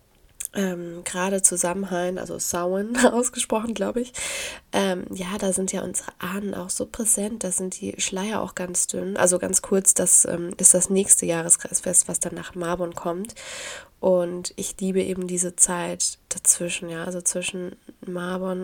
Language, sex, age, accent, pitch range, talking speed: German, female, 20-39, German, 180-215 Hz, 165 wpm